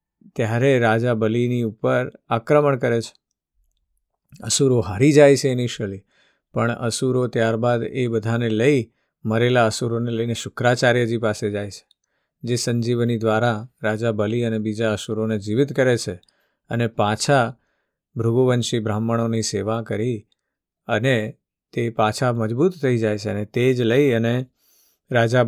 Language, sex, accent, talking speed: Gujarati, male, native, 95 wpm